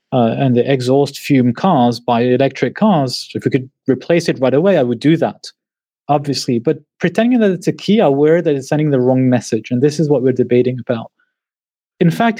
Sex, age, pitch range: male, 30-49, 135-195 Hz